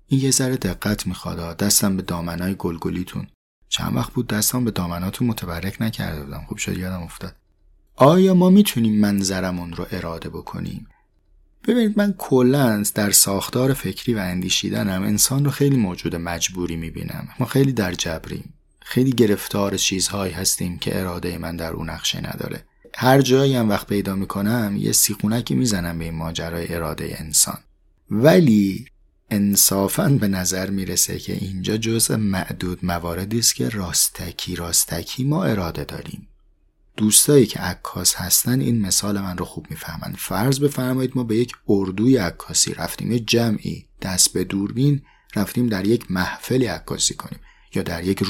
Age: 30-49